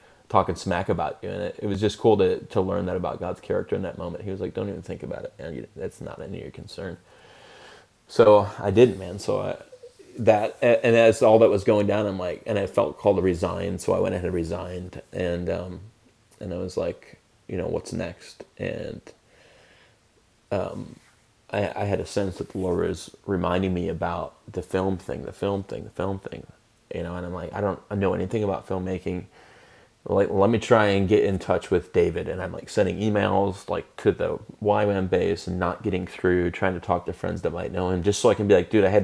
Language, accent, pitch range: English, American, 90-105 Hz